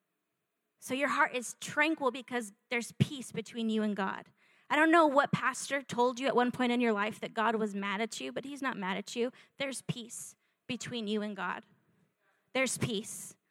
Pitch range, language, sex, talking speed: 210-275 Hz, English, female, 200 wpm